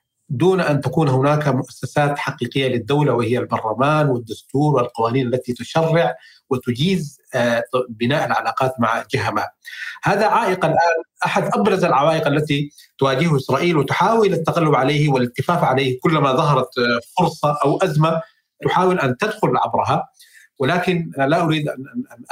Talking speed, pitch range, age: 120 wpm, 130-175 Hz, 40-59